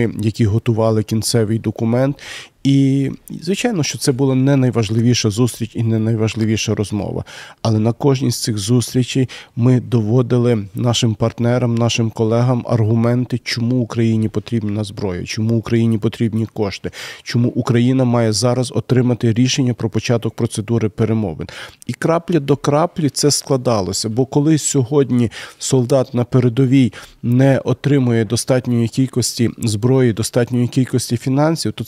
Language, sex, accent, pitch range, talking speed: Ukrainian, male, native, 115-135 Hz, 130 wpm